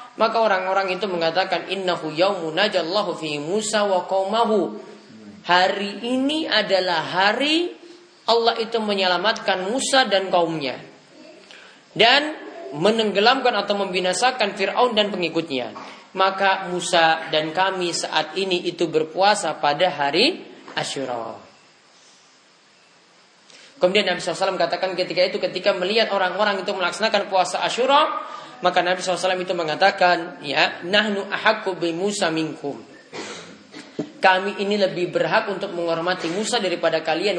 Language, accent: Indonesian, native